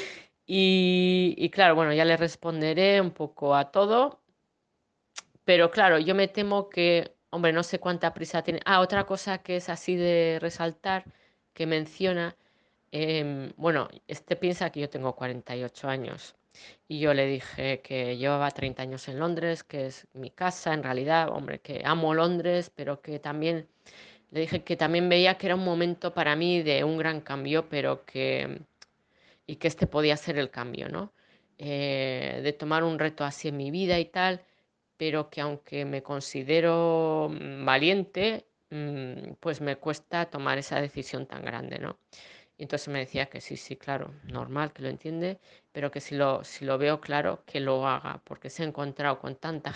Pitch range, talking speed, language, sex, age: 140-175 Hz, 175 wpm, Spanish, female, 20-39